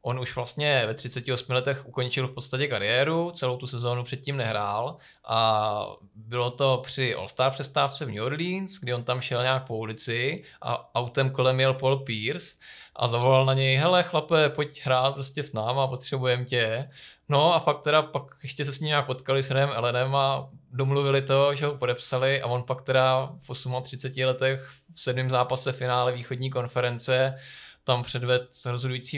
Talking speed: 175 wpm